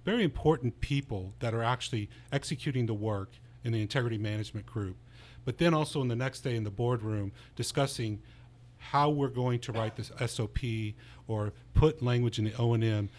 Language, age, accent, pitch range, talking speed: English, 40-59, American, 110-130 Hz, 175 wpm